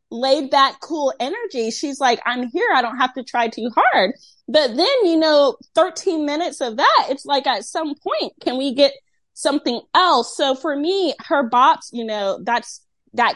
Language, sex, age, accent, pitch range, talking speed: English, female, 20-39, American, 220-320 Hz, 190 wpm